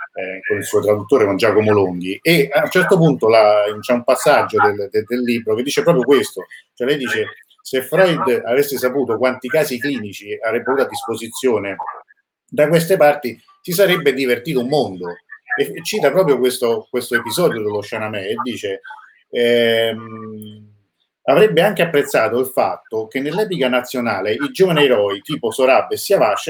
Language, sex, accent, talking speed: Italian, male, native, 165 wpm